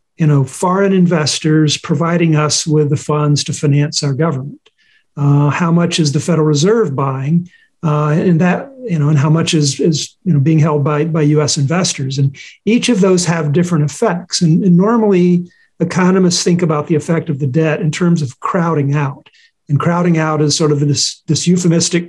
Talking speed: 195 wpm